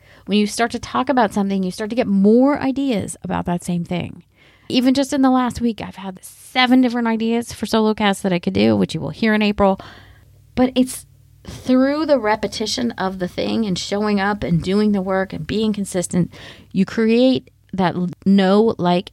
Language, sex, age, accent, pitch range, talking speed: English, female, 30-49, American, 175-245 Hz, 200 wpm